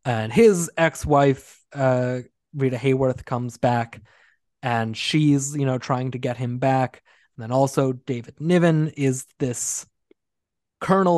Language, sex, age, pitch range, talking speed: English, male, 20-39, 120-140 Hz, 135 wpm